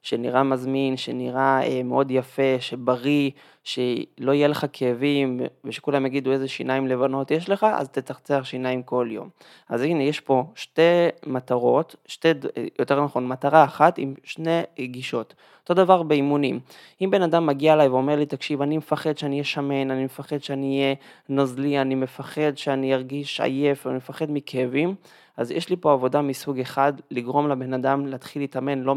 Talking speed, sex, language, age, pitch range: 160 wpm, male, Hebrew, 20-39, 130-155 Hz